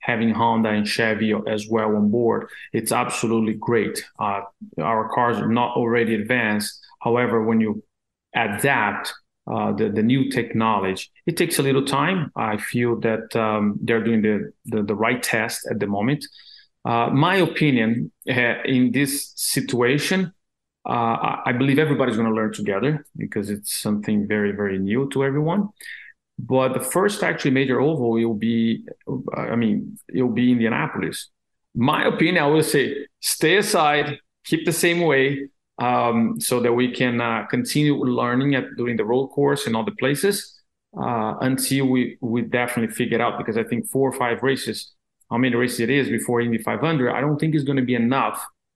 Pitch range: 115-140 Hz